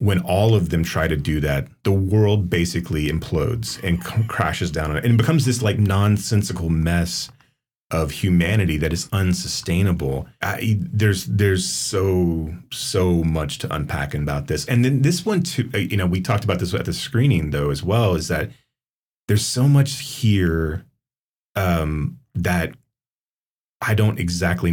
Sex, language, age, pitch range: male, English, 30-49, 85-120 Hz